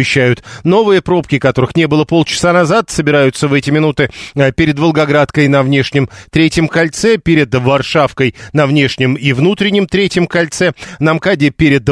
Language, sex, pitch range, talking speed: Russian, male, 135-170 Hz, 140 wpm